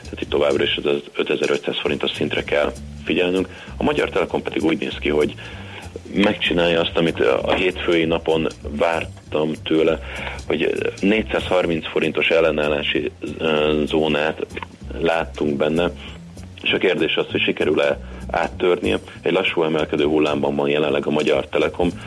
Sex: male